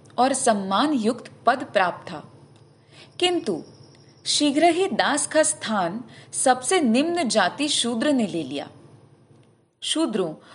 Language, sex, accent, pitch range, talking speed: Hindi, female, native, 185-275 Hz, 115 wpm